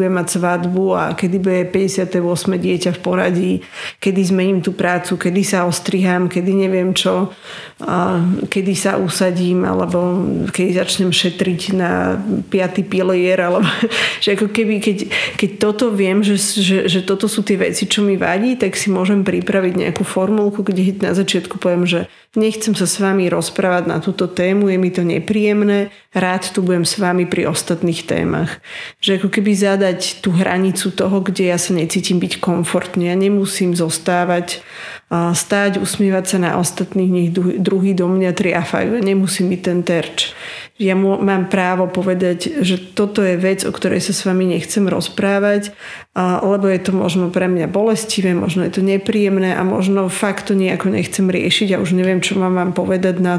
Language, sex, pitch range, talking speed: Slovak, female, 180-195 Hz, 170 wpm